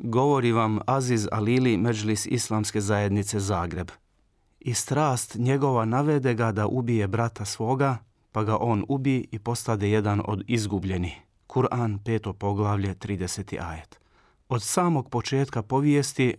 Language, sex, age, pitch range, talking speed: Croatian, male, 40-59, 105-125 Hz, 130 wpm